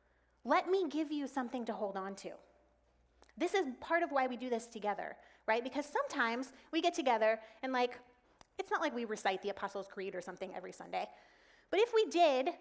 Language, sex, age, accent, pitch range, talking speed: English, female, 30-49, American, 200-285 Hz, 200 wpm